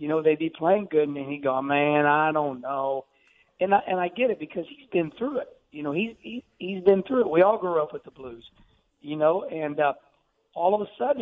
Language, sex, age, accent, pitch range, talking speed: English, male, 60-79, American, 155-215 Hz, 255 wpm